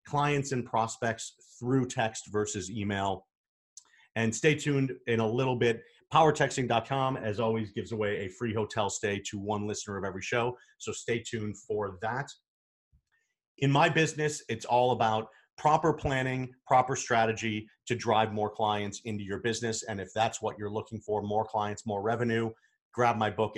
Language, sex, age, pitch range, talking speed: English, male, 40-59, 105-125 Hz, 165 wpm